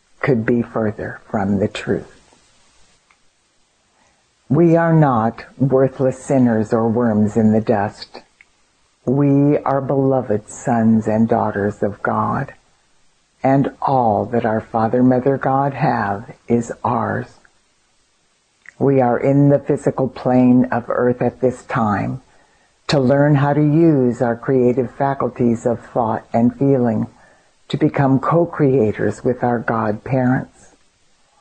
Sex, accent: female, American